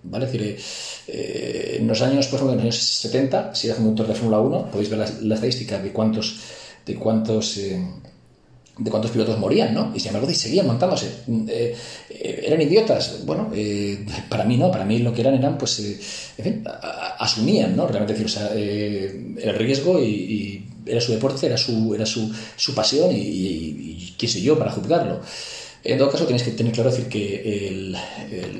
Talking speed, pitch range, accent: 210 wpm, 100-115 Hz, Spanish